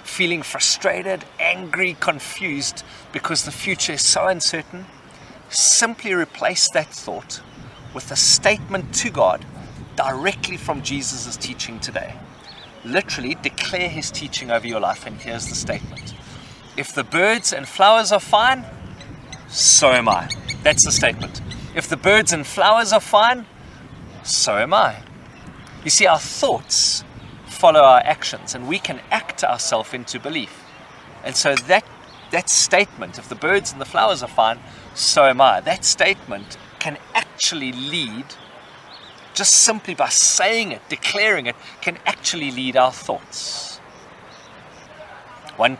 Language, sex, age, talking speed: English, male, 40-59, 140 wpm